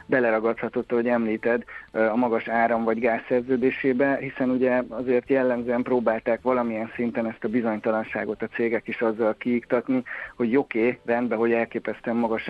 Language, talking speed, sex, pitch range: Hungarian, 145 wpm, male, 110-130 Hz